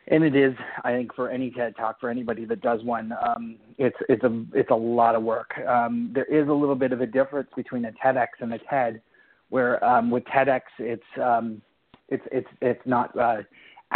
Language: English